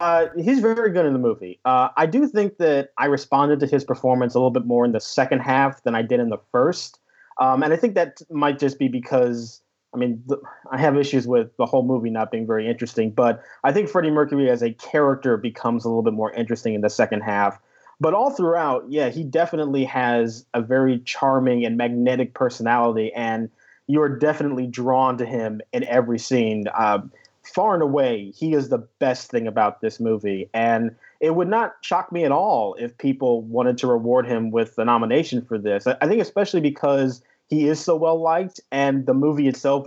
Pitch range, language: 115-145 Hz, English